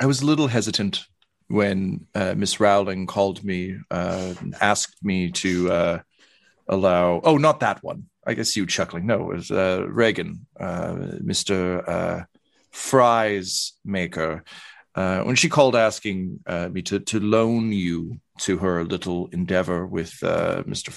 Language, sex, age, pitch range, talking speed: English, male, 40-59, 90-110 Hz, 150 wpm